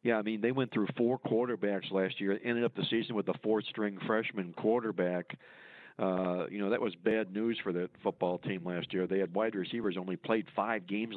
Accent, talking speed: American, 215 wpm